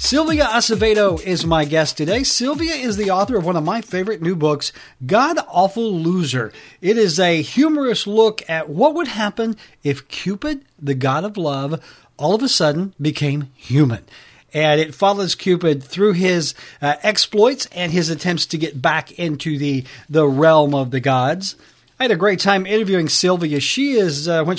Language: English